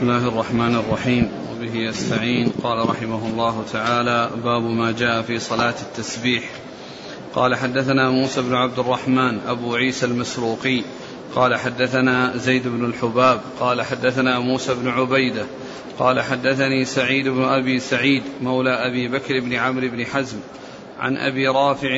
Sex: male